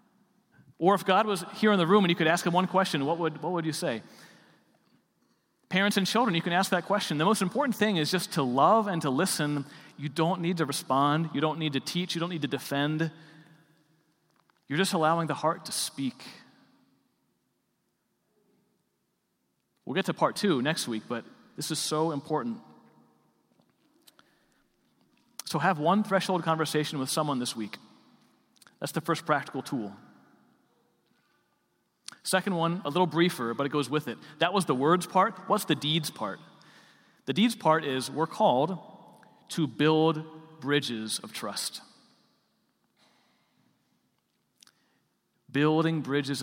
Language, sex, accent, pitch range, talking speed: English, male, American, 150-190 Hz, 155 wpm